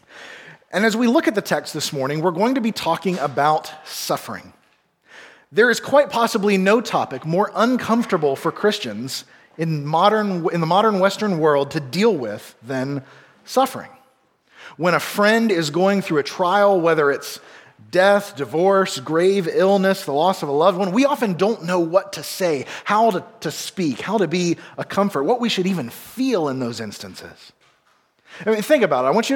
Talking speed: 185 wpm